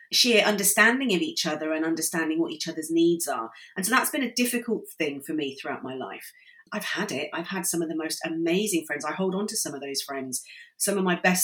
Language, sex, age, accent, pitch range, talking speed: English, female, 30-49, British, 155-200 Hz, 245 wpm